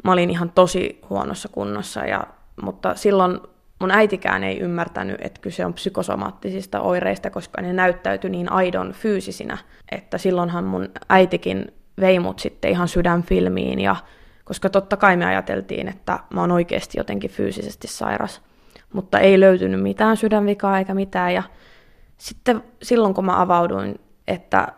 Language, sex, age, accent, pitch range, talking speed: Finnish, female, 20-39, native, 170-195 Hz, 145 wpm